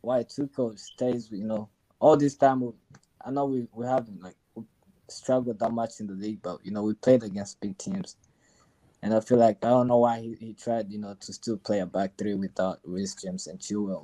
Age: 20-39